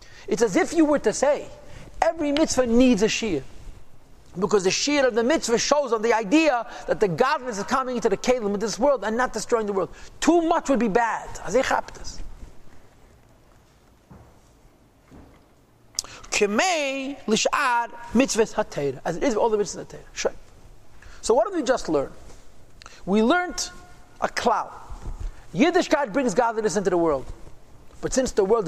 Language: English